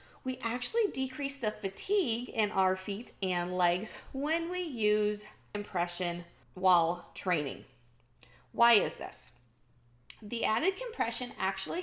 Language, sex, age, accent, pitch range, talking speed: English, female, 40-59, American, 185-260 Hz, 115 wpm